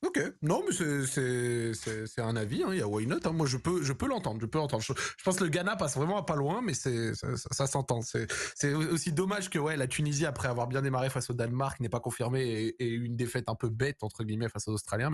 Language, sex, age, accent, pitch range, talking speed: French, male, 20-39, French, 130-180 Hz, 285 wpm